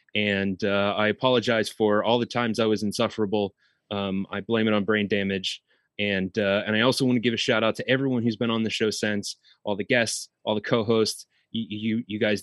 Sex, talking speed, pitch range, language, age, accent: male, 225 wpm, 105-130 Hz, English, 20-39, American